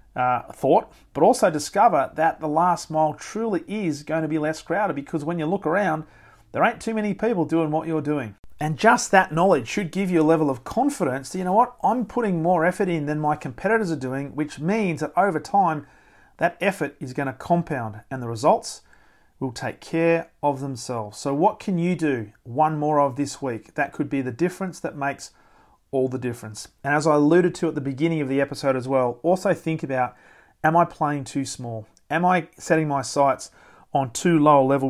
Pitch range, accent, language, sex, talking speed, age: 130-165 Hz, Australian, English, male, 215 wpm, 40-59